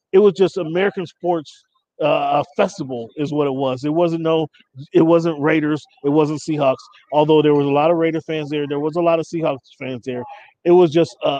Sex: male